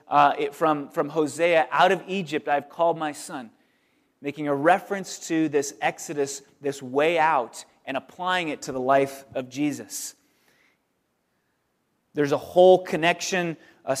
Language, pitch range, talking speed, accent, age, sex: English, 140-170 Hz, 150 wpm, American, 30-49, male